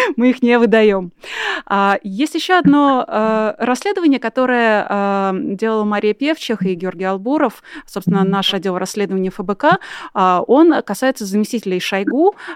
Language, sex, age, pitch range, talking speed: Russian, female, 20-39, 195-250 Hz, 115 wpm